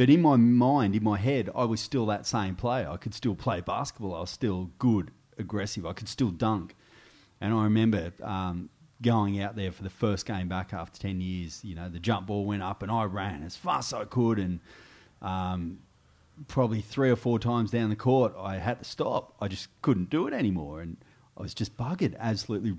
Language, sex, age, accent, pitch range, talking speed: English, male, 30-49, Australian, 95-120 Hz, 220 wpm